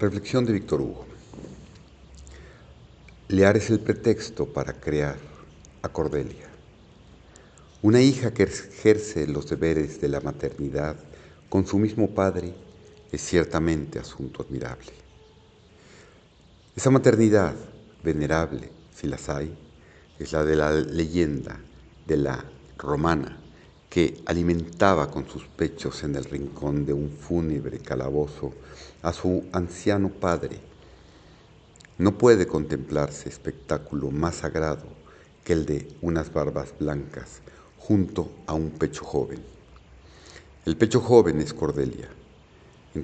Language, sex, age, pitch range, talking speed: Spanish, male, 50-69, 75-95 Hz, 115 wpm